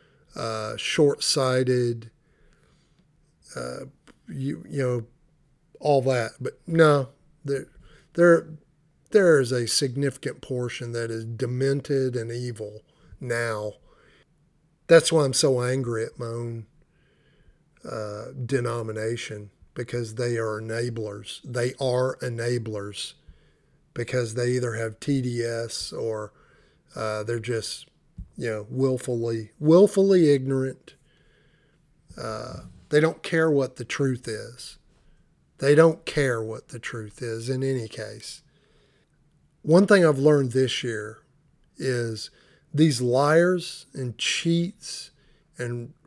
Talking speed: 110 wpm